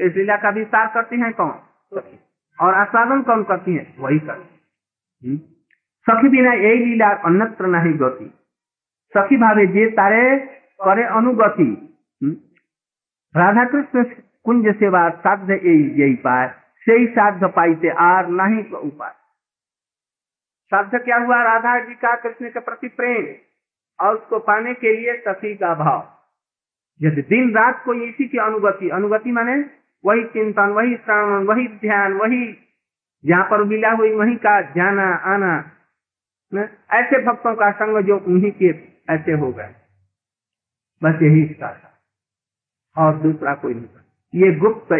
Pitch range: 170-230 Hz